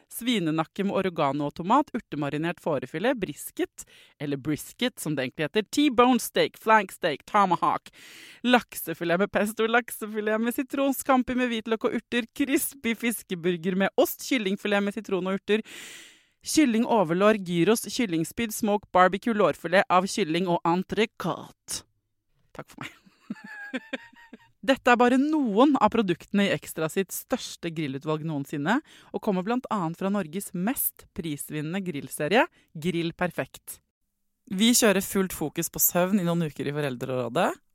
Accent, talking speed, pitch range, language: Swedish, 135 wpm, 170-230 Hz, English